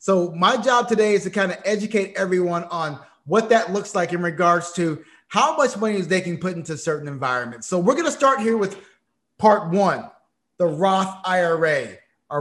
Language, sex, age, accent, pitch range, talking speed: English, male, 30-49, American, 170-215 Hz, 195 wpm